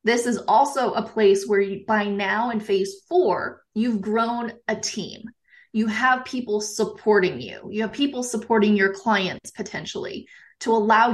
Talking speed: 155 wpm